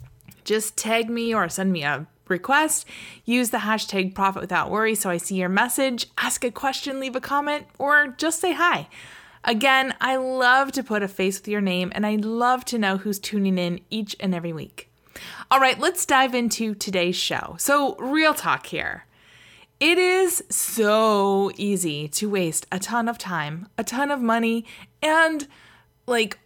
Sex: female